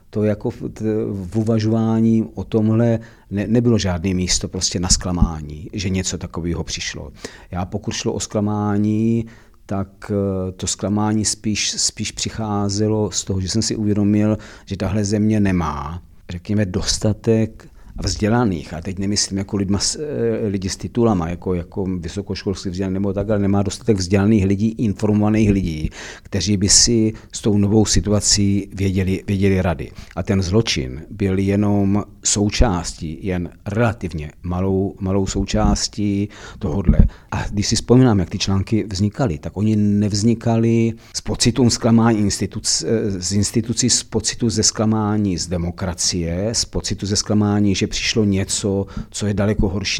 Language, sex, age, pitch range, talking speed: Czech, male, 50-69, 95-110 Hz, 140 wpm